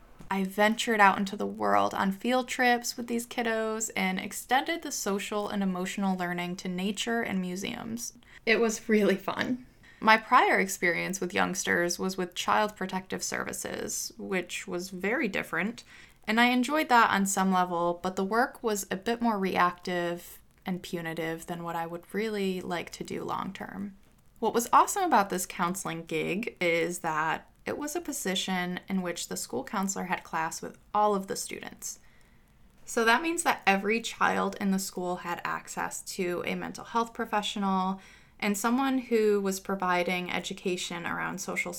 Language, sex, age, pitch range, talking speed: English, female, 20-39, 180-225 Hz, 170 wpm